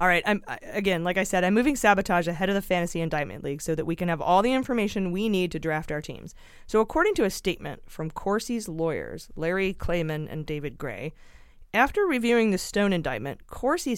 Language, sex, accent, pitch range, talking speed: English, female, American, 160-210 Hz, 210 wpm